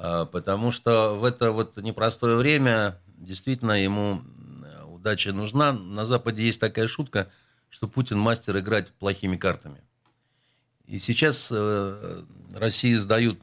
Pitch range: 90-115 Hz